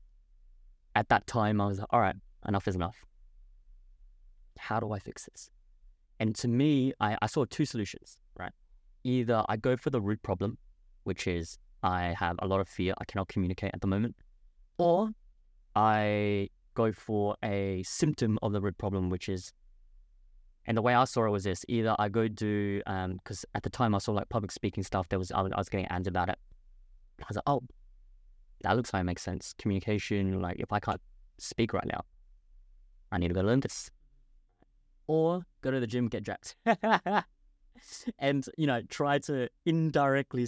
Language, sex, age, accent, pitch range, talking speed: English, male, 20-39, British, 95-120 Hz, 190 wpm